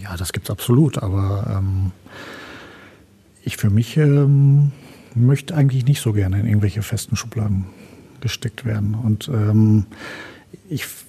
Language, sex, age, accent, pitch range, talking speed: German, male, 50-69, German, 110-135 Hz, 135 wpm